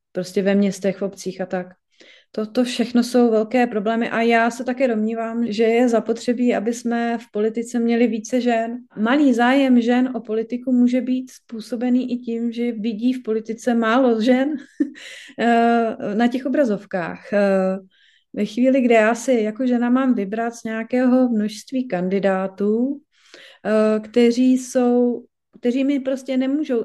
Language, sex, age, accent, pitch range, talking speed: Czech, female, 30-49, native, 215-245 Hz, 145 wpm